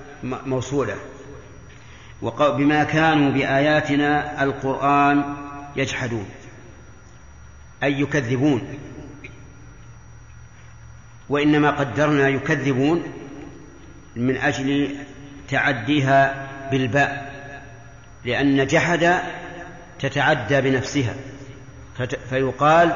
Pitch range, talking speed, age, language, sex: 130-150 Hz, 50 wpm, 50-69, English, male